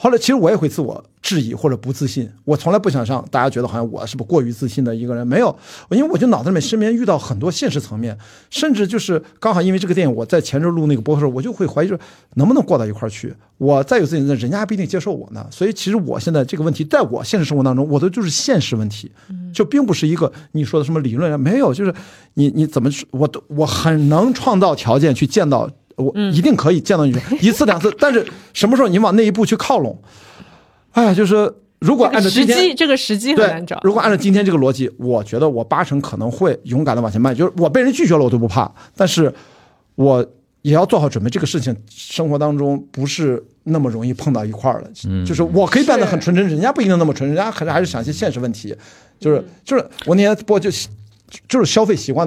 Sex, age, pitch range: male, 50-69, 130-195 Hz